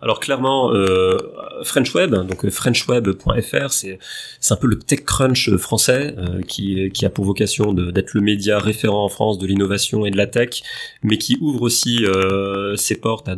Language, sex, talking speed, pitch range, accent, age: French, male, 185 wpm, 95-120 Hz, French, 30-49